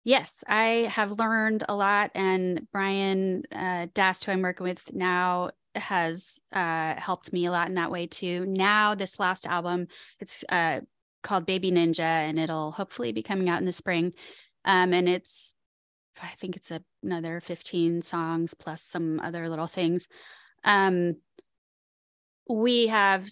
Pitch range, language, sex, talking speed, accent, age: 175-195 Hz, English, female, 150 wpm, American, 20-39